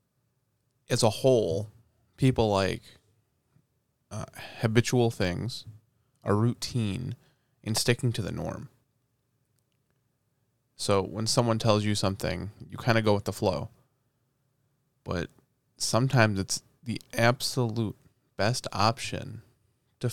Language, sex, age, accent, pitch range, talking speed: English, male, 20-39, American, 105-130 Hz, 105 wpm